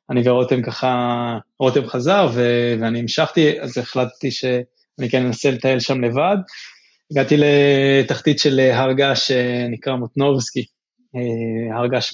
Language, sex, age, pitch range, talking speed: Hebrew, male, 20-39, 120-140 Hz, 115 wpm